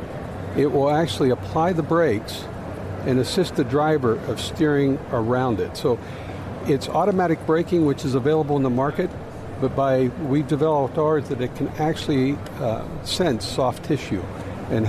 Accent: American